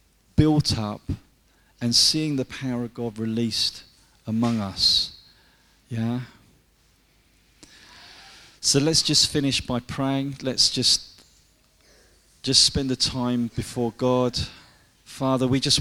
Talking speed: 110 wpm